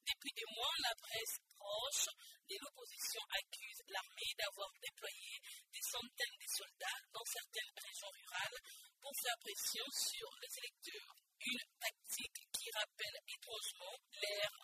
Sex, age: female, 50-69